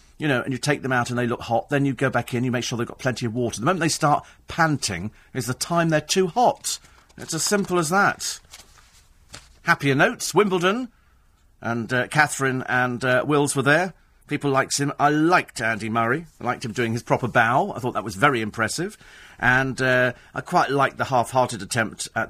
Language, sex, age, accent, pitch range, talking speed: English, male, 40-59, British, 115-150 Hz, 215 wpm